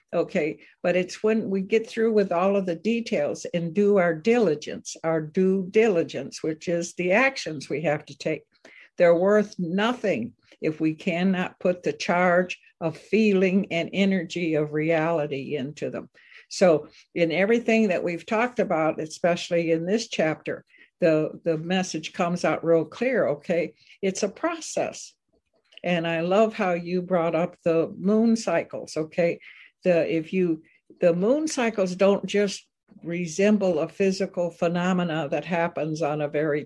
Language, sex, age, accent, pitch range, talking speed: English, female, 60-79, American, 165-205 Hz, 155 wpm